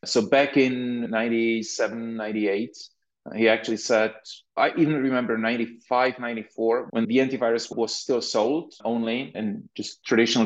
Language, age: English, 30-49